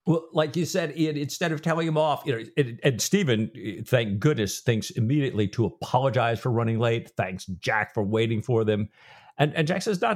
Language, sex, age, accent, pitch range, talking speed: English, male, 50-69, American, 110-160 Hz, 200 wpm